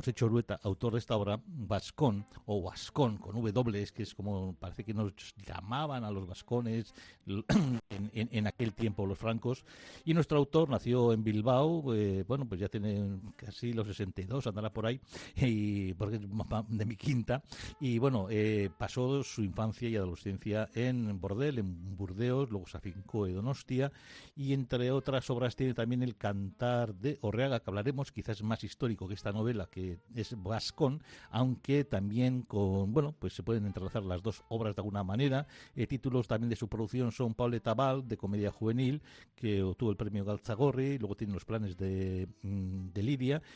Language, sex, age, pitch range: Spanish, male, 60-79, 100-125 Hz